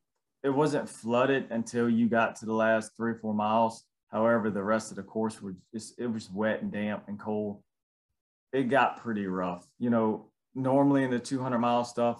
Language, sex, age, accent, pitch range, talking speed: English, male, 30-49, American, 100-115 Hz, 190 wpm